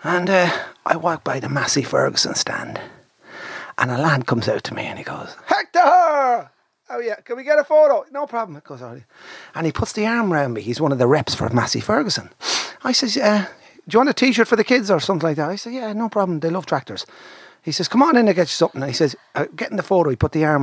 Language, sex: English, male